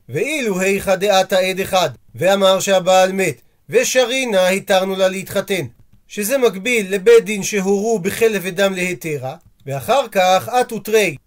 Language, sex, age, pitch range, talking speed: Hebrew, male, 40-59, 180-235 Hz, 130 wpm